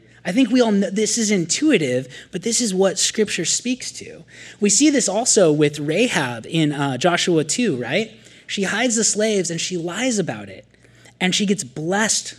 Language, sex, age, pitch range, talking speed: English, male, 20-39, 150-210 Hz, 190 wpm